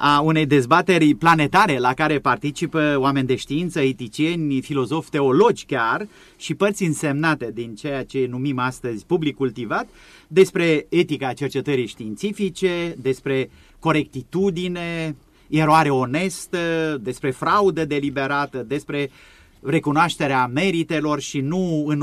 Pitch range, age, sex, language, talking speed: 130-160 Hz, 30-49, male, Romanian, 110 wpm